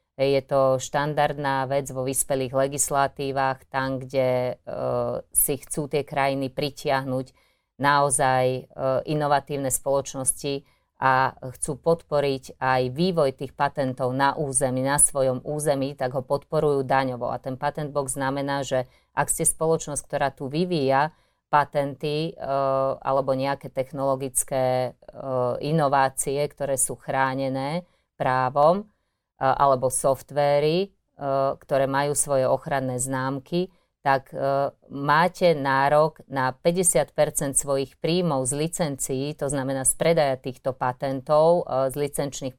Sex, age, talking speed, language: female, 30-49, 115 wpm, Slovak